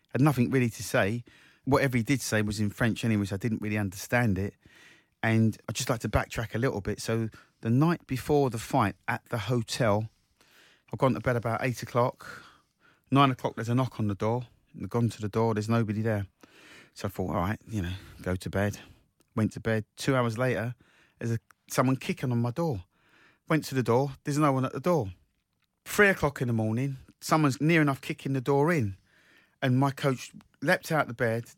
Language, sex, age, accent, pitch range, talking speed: English, male, 30-49, British, 110-140 Hz, 220 wpm